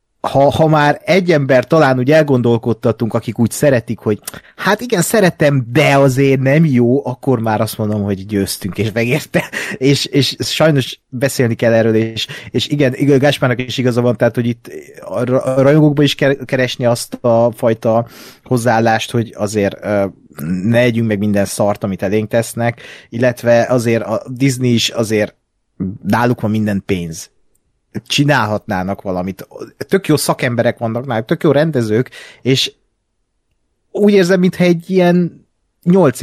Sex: male